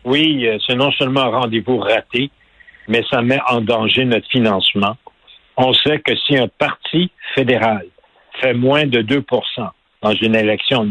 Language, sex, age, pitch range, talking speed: French, male, 60-79, 120-140 Hz, 155 wpm